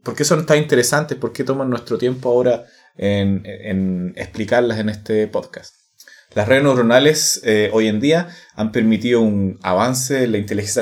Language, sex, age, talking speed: Spanish, male, 20-39, 175 wpm